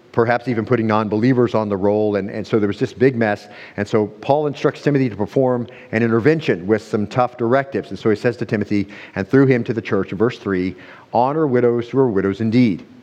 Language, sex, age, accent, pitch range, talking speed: English, male, 50-69, American, 110-130 Hz, 225 wpm